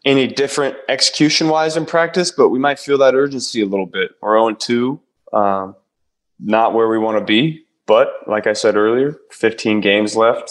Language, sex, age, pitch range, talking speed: English, male, 20-39, 100-120 Hz, 185 wpm